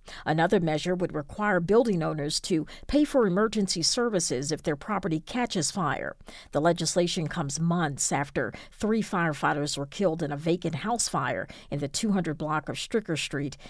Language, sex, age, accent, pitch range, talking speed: English, female, 50-69, American, 155-200 Hz, 160 wpm